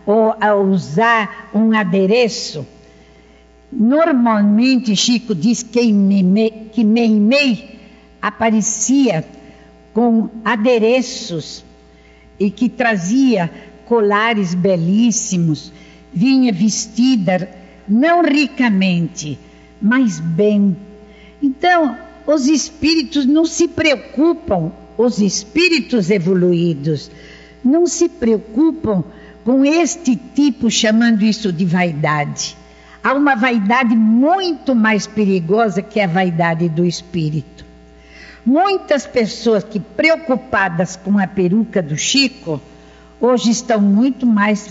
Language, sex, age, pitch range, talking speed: Portuguese, female, 60-79, 175-245 Hz, 90 wpm